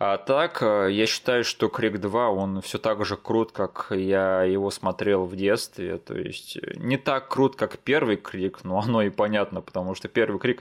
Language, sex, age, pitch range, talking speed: Russian, male, 20-39, 100-120 Hz, 190 wpm